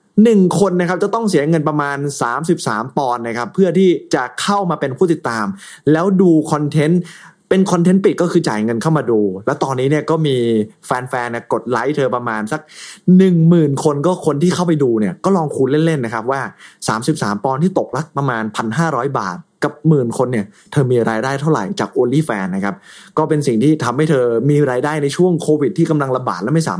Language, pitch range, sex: Thai, 135-185 Hz, male